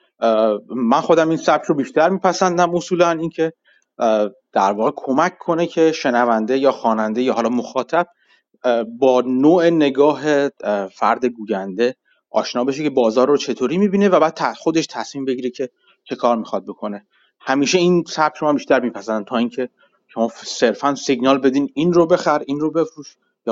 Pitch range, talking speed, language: 120-165 Hz, 155 wpm, Persian